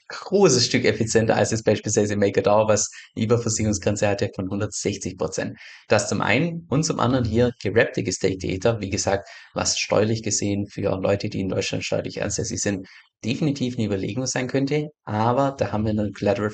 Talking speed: 175 wpm